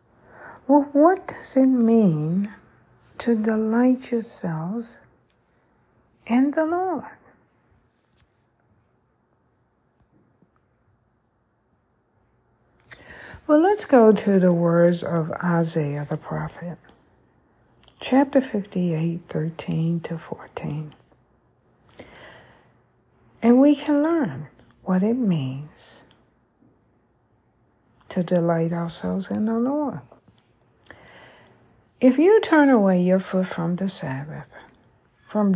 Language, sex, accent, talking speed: English, female, American, 85 wpm